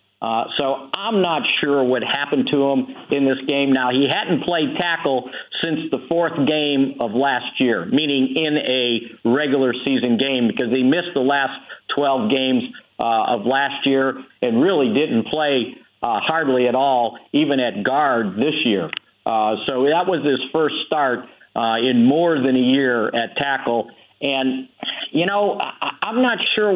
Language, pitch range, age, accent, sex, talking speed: English, 130-180 Hz, 50-69, American, male, 170 wpm